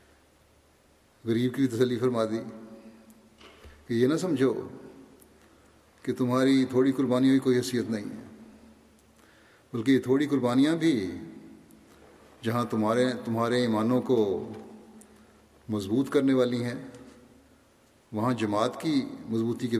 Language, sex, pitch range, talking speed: Urdu, male, 110-125 Hz, 110 wpm